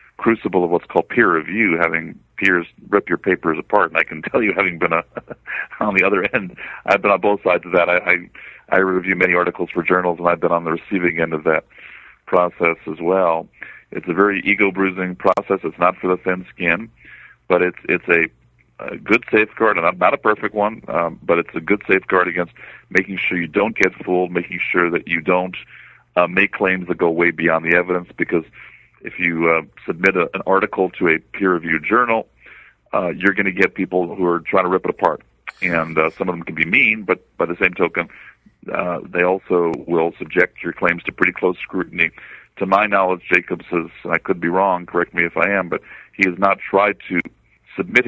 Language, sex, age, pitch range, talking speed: English, male, 40-59, 85-95 Hz, 215 wpm